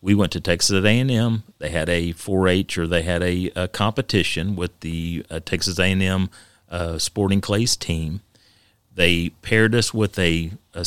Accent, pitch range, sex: American, 90-120 Hz, male